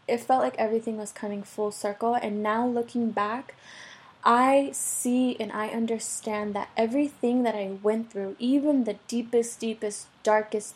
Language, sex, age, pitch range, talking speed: English, female, 20-39, 205-240 Hz, 155 wpm